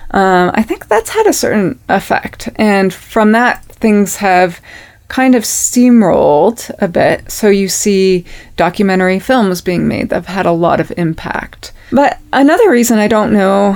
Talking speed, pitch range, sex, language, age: 165 wpm, 175-220 Hz, female, English, 20-39